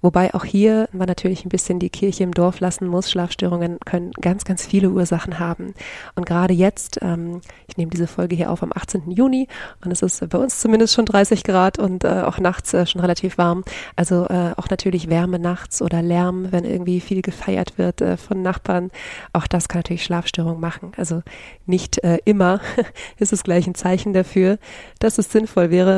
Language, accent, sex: German, German, female